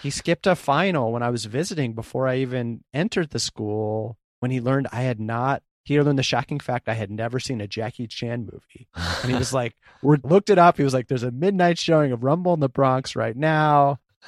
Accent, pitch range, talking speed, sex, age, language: American, 110-130 Hz, 230 wpm, male, 30-49, English